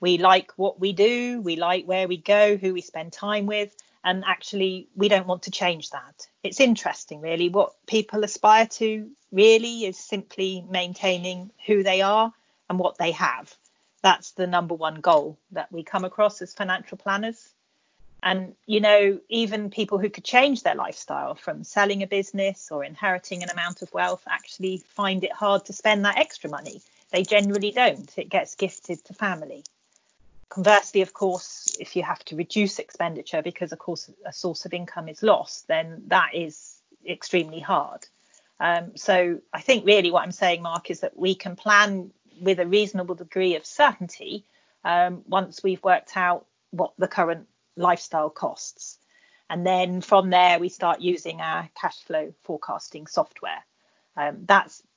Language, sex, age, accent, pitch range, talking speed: English, female, 40-59, British, 175-205 Hz, 170 wpm